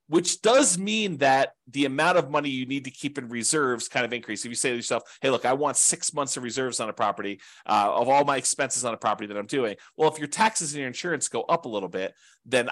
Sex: male